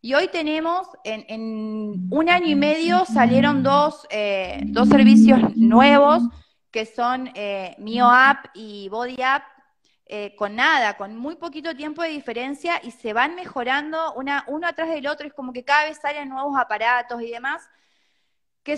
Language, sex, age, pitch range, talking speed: Spanish, female, 20-39, 220-295 Hz, 160 wpm